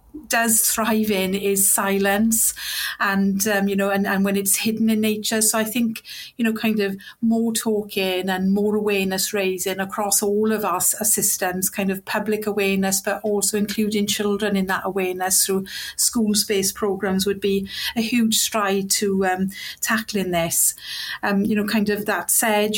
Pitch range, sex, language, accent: 195-215 Hz, female, English, British